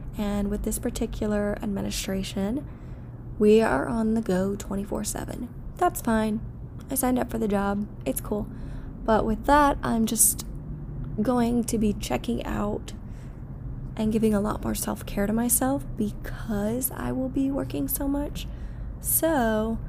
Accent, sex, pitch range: American, female, 195-245 Hz